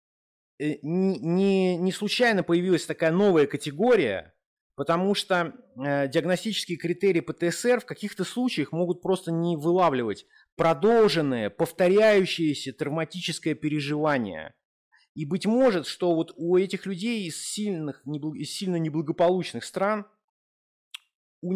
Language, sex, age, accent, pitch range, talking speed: Russian, male, 30-49, native, 150-190 Hz, 105 wpm